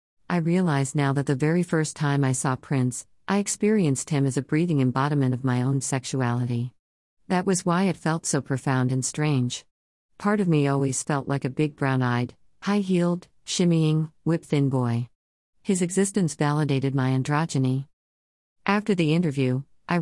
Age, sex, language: 50-69, female, English